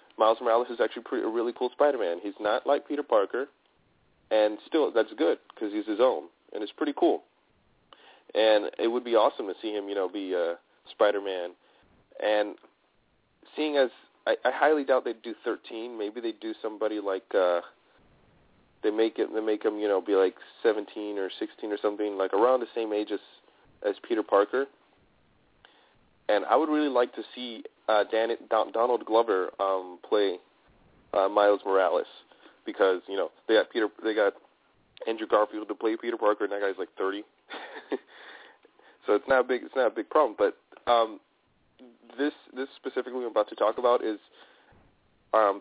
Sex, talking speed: male, 175 wpm